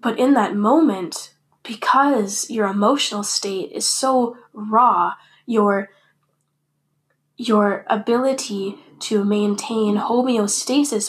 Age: 10-29